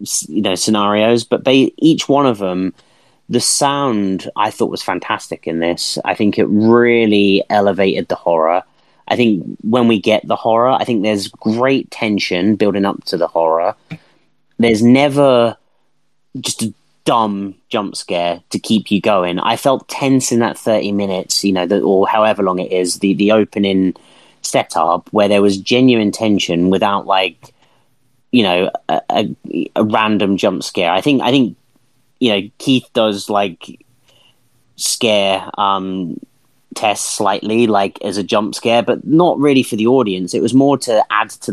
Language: English